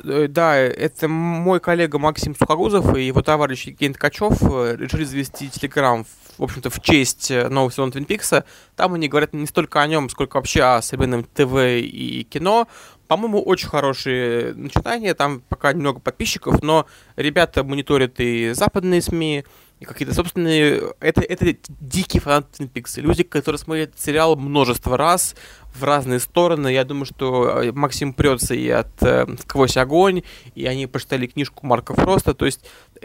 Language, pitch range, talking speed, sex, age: Russian, 125-155 Hz, 155 wpm, male, 20-39